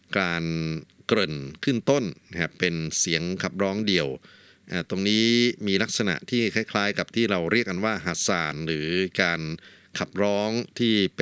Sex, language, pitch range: male, Thai, 85-105 Hz